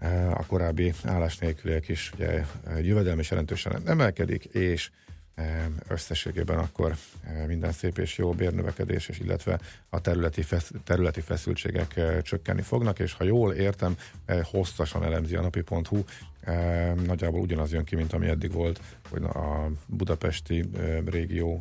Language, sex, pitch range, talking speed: Hungarian, male, 80-95 Hz, 125 wpm